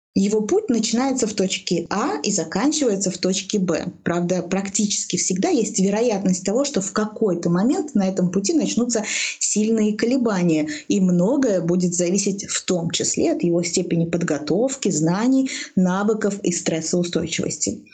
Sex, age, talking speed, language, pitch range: female, 20-39, 140 wpm, Russian, 180-225 Hz